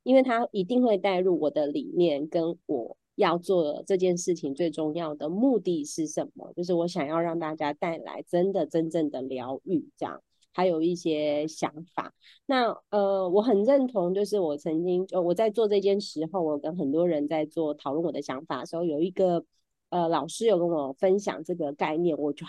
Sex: female